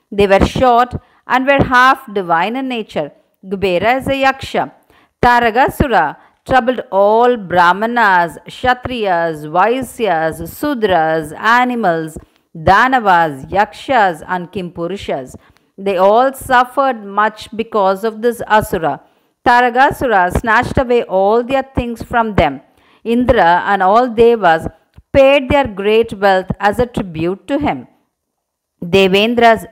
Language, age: Tamil, 50-69